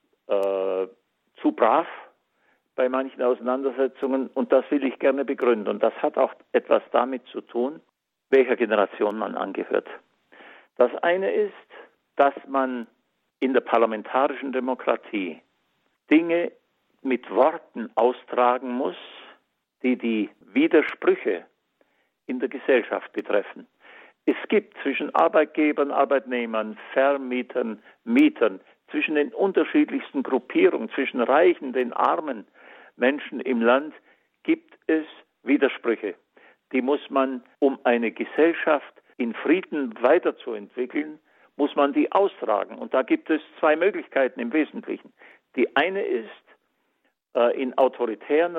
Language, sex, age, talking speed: German, male, 50-69, 115 wpm